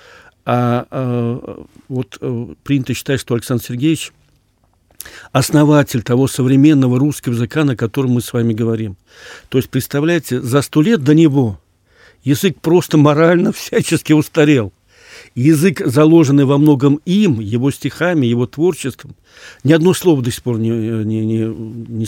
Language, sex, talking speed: Russian, male, 135 wpm